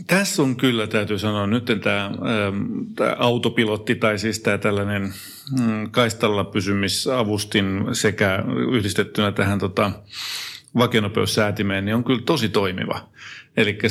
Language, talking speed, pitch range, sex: Finnish, 115 wpm, 100-115 Hz, male